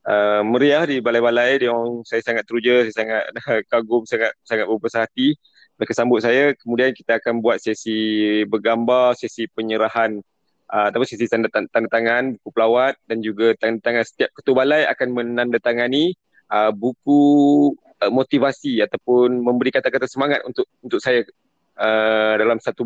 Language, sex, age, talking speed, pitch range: Malay, male, 20-39, 150 wpm, 115-130 Hz